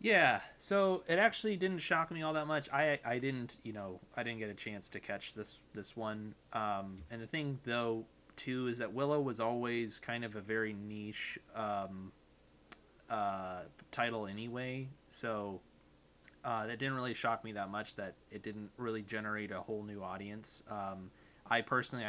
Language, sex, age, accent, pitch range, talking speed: English, male, 20-39, American, 100-120 Hz, 180 wpm